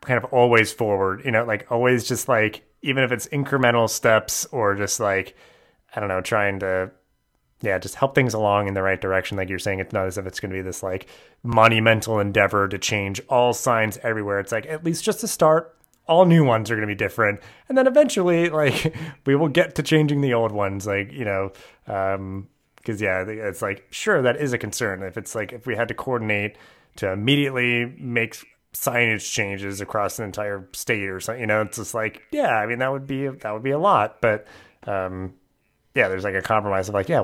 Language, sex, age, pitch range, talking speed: English, male, 30-49, 95-125 Hz, 220 wpm